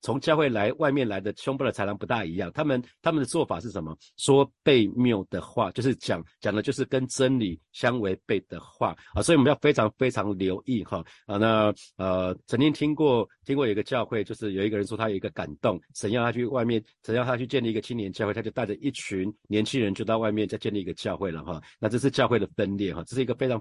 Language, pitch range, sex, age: Chinese, 105-135 Hz, male, 50-69